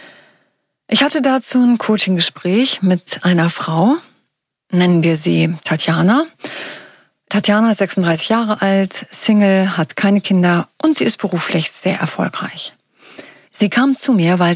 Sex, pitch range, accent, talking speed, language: female, 175-230 Hz, German, 130 wpm, German